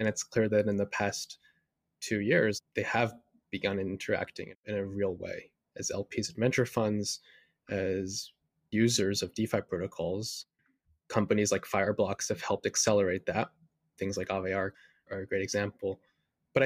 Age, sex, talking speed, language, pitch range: 20-39, male, 155 wpm, English, 100-115 Hz